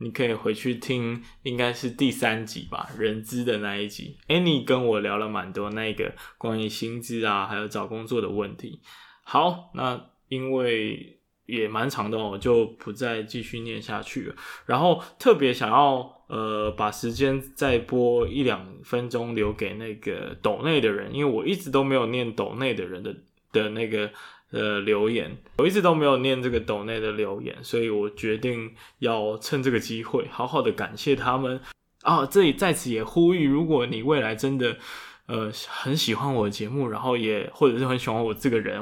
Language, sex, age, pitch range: Chinese, male, 20-39, 110-130 Hz